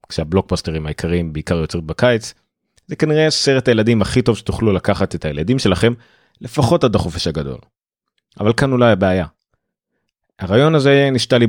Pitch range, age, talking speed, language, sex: 85-120 Hz, 30-49, 145 wpm, Hebrew, male